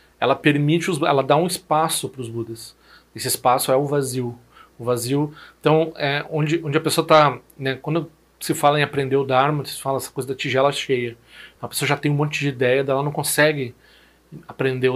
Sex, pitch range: male, 130-155 Hz